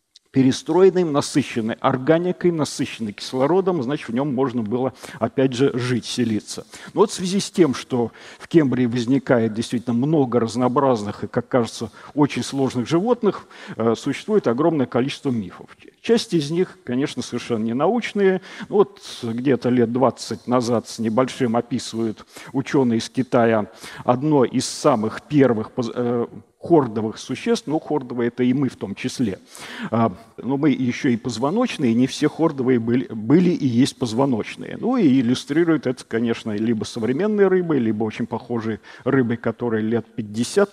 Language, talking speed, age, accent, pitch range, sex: Russian, 145 wpm, 50-69, native, 120-160 Hz, male